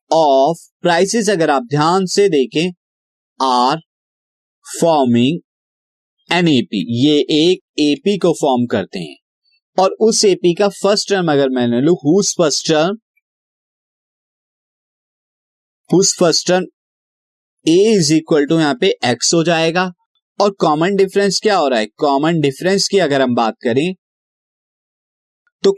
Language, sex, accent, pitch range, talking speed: Hindi, male, native, 140-190 Hz, 125 wpm